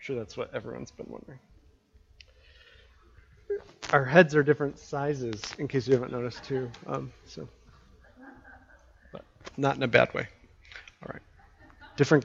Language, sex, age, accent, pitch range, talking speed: English, male, 30-49, American, 115-145 Hz, 135 wpm